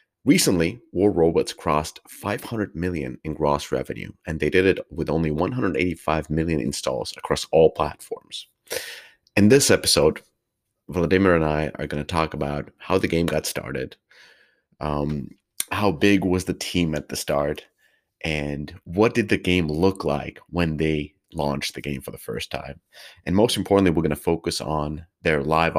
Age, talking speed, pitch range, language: 30-49, 170 wpm, 75-95 Hz, English